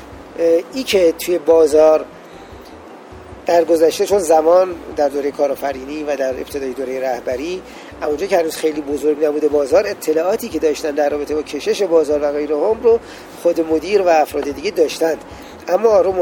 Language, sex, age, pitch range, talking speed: Persian, male, 40-59, 145-185 Hz, 160 wpm